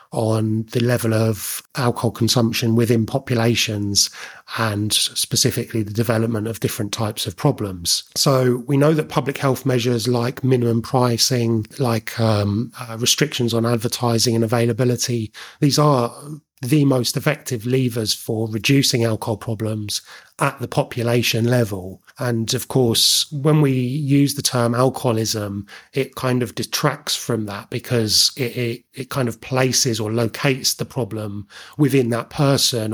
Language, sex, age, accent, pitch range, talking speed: English, male, 30-49, British, 110-130 Hz, 140 wpm